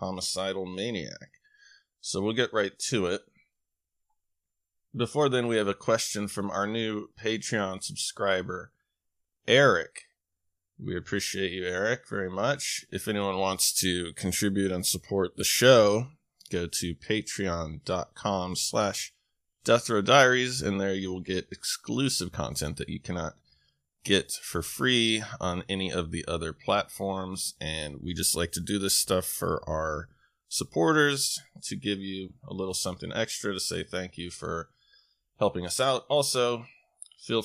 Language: English